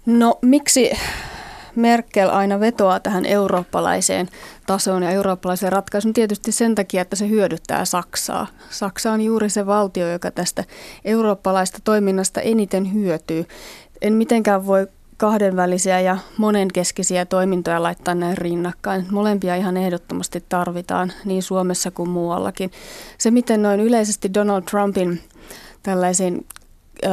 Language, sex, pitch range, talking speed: Finnish, female, 180-210 Hz, 120 wpm